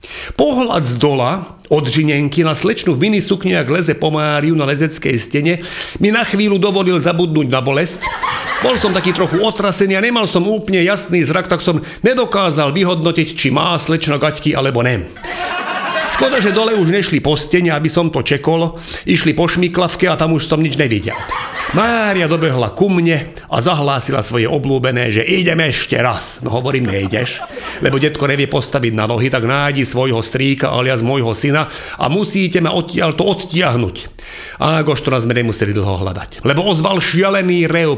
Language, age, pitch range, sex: Slovak, 40-59, 130-175 Hz, male